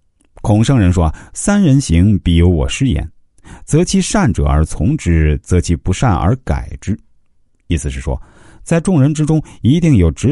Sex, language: male, Chinese